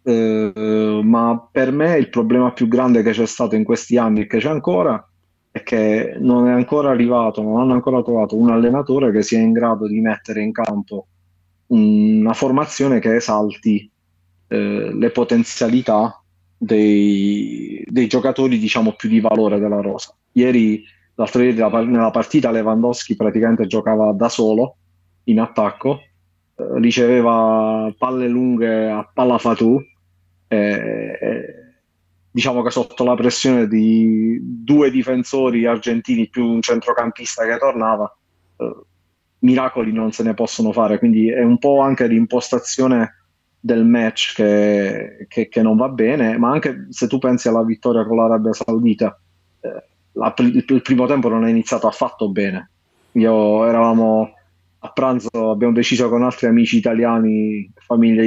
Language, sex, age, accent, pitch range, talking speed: Italian, male, 30-49, native, 105-125 Hz, 145 wpm